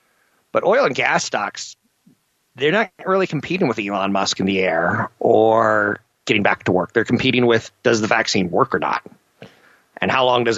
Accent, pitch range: American, 105-125 Hz